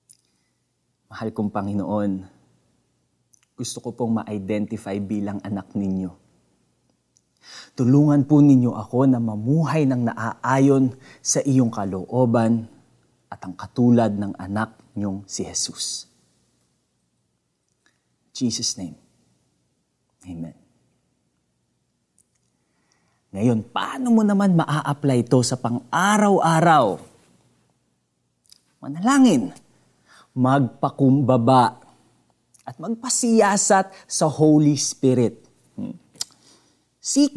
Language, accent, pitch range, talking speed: Filipino, native, 100-140 Hz, 80 wpm